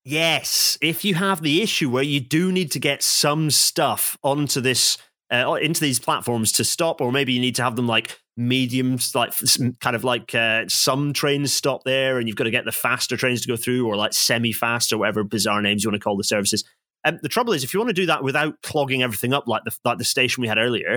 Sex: male